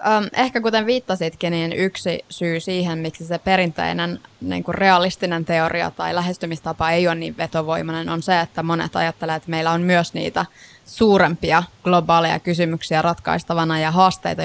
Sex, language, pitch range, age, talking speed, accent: female, Finnish, 165-185 Hz, 20-39, 150 wpm, native